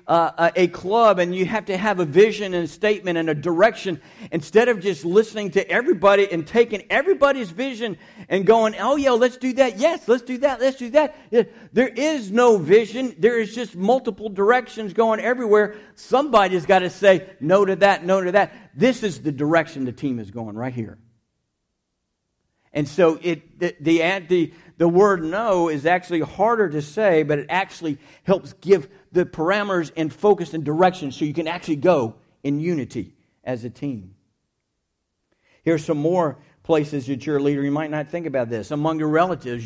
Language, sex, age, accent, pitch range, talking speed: English, male, 50-69, American, 155-210 Hz, 190 wpm